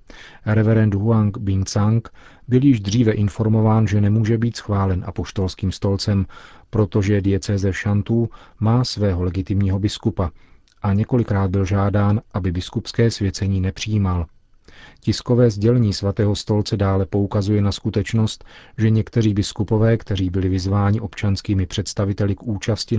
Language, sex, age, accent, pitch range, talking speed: Czech, male, 40-59, native, 95-110 Hz, 120 wpm